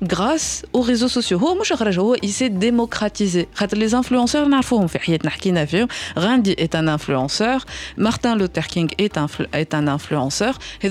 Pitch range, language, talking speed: 160-230 Hz, Arabic, 105 wpm